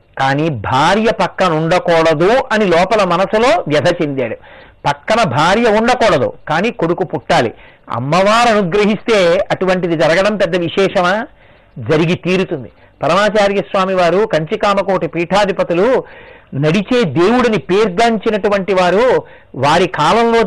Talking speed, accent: 95 wpm, native